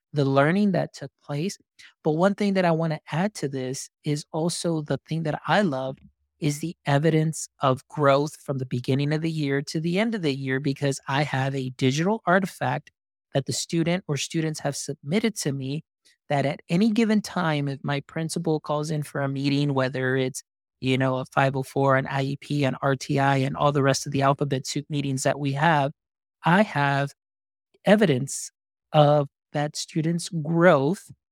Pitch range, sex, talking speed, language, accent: 140-160 Hz, male, 185 wpm, English, American